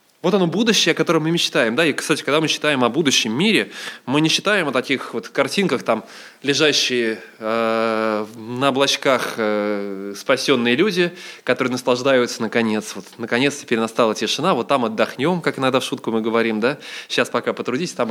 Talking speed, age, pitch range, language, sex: 165 wpm, 20-39, 115-155 Hz, Russian, male